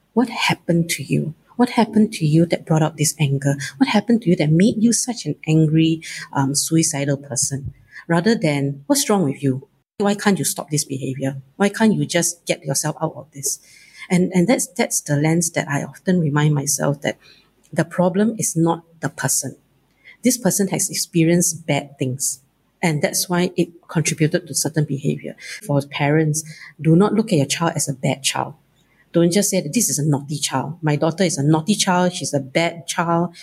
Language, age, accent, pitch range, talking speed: English, 50-69, Malaysian, 145-185 Hz, 195 wpm